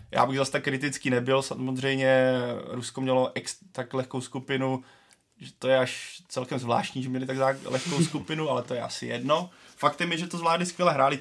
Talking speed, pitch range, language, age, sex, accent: 195 wpm, 125-135 Hz, Czech, 20-39, male, native